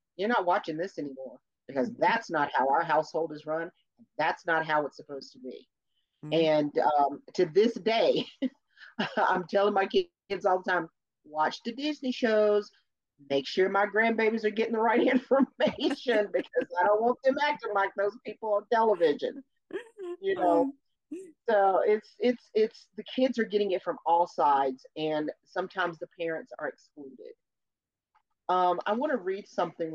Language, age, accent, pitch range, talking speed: English, 40-59, American, 155-250 Hz, 165 wpm